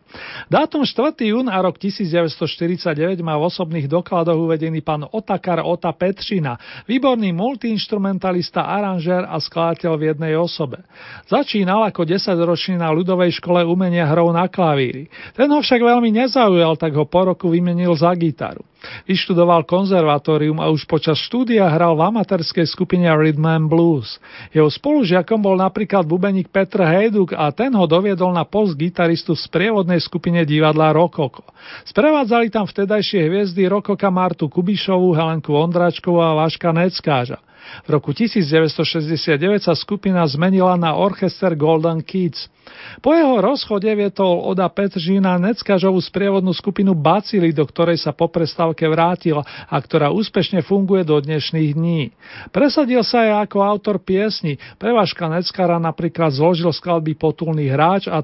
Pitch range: 160-195 Hz